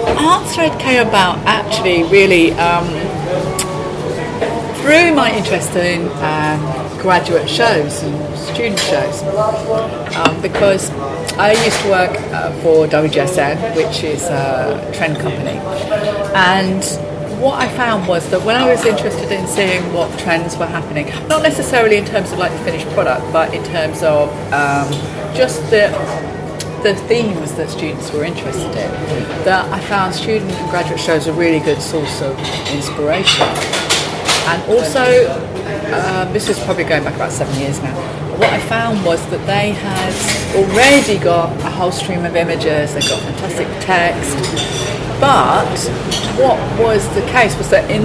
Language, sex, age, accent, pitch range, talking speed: English, female, 30-49, British, 155-205 Hz, 150 wpm